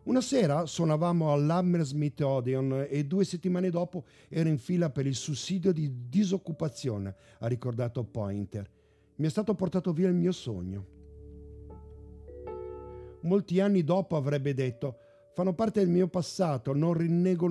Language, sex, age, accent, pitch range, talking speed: English, male, 50-69, Italian, 105-175 Hz, 135 wpm